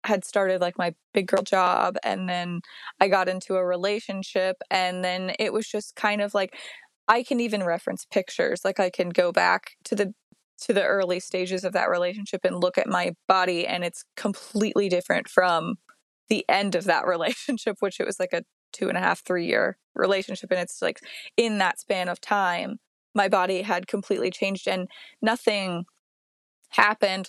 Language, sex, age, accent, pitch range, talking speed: English, female, 20-39, American, 185-220 Hz, 185 wpm